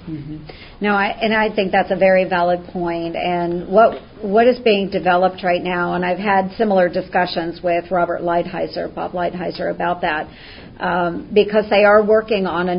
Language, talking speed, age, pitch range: English, 180 wpm, 50-69, 180-205 Hz